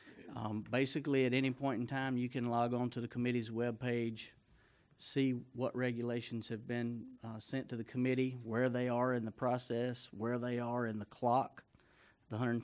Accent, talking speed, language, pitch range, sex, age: American, 180 wpm, English, 115-130 Hz, male, 40-59